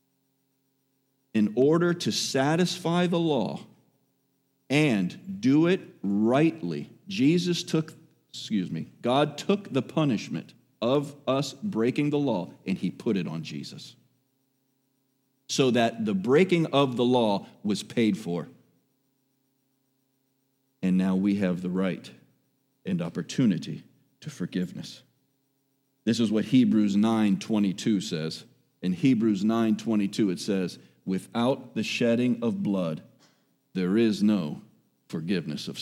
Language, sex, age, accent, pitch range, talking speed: English, male, 50-69, American, 110-145 Hz, 115 wpm